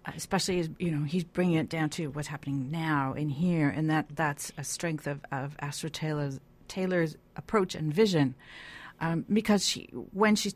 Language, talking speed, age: English, 180 wpm, 40-59